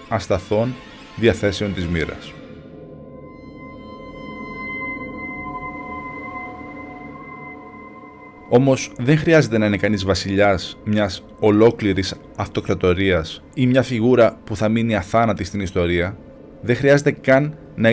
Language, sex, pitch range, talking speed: Greek, male, 95-125 Hz, 85 wpm